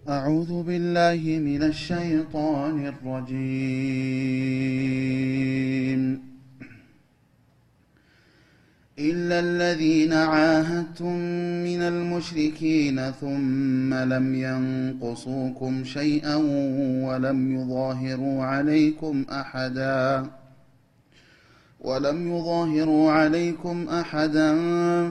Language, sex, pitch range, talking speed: Amharic, male, 130-160 Hz, 55 wpm